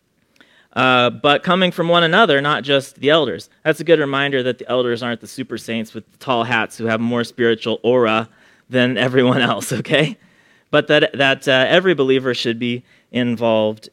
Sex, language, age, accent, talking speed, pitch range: male, English, 30-49, American, 195 wpm, 120-160 Hz